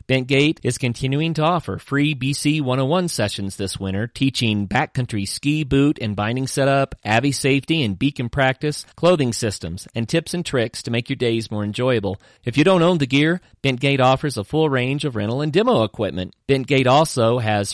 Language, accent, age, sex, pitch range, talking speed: English, American, 40-59, male, 110-150 Hz, 185 wpm